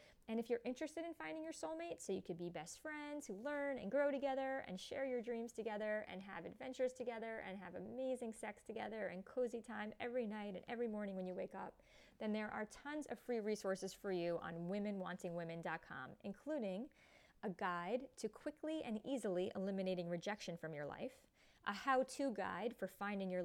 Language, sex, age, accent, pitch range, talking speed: English, female, 30-49, American, 180-240 Hz, 190 wpm